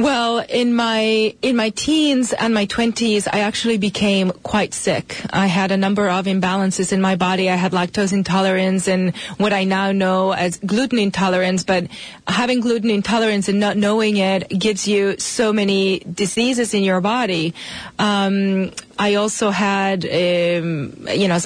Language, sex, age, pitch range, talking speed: English, female, 30-49, 195-235 Hz, 165 wpm